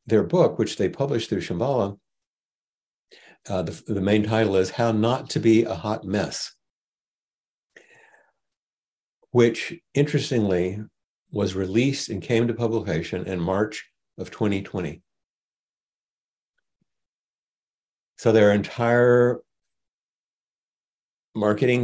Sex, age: male, 60-79